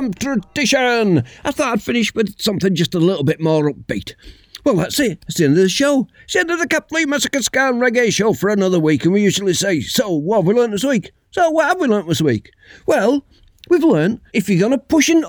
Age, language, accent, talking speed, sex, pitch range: 50-69, English, British, 235 wpm, male, 180-265 Hz